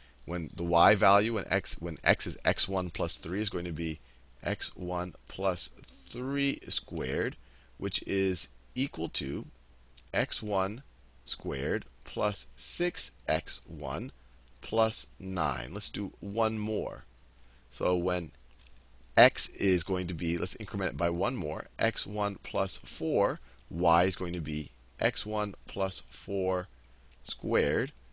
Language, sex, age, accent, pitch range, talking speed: English, male, 40-59, American, 65-105 Hz, 125 wpm